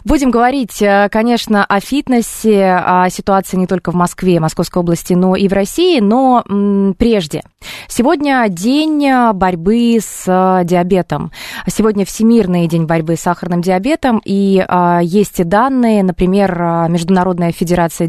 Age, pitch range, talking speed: 20-39, 175-215 Hz, 125 wpm